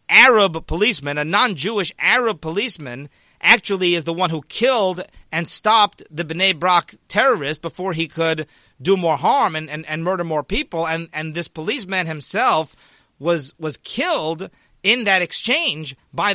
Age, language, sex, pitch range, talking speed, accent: 40-59, English, male, 160-200 Hz, 155 wpm, American